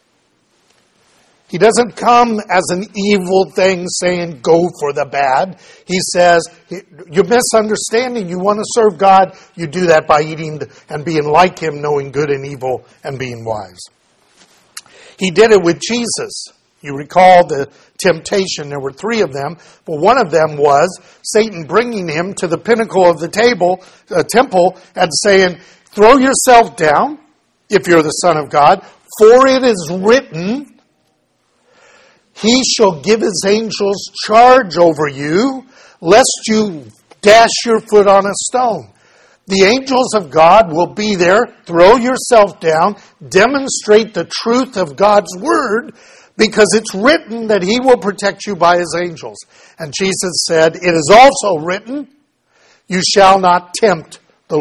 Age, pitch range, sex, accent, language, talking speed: 50-69, 165-220 Hz, male, American, English, 150 wpm